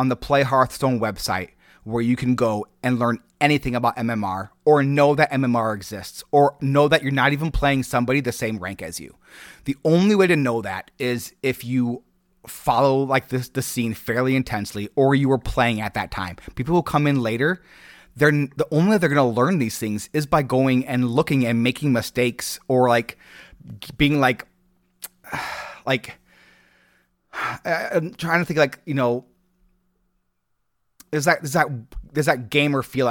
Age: 30-49